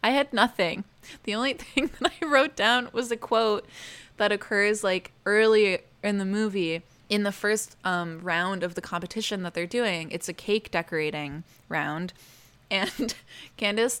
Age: 20-39